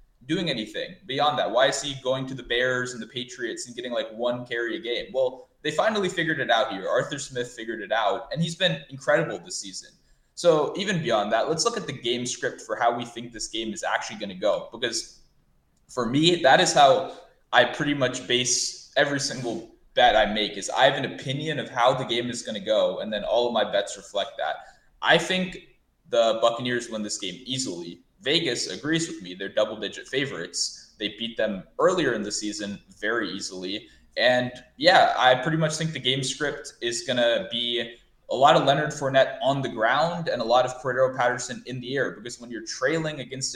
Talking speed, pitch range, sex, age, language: 210 wpm, 120-145 Hz, male, 20-39, English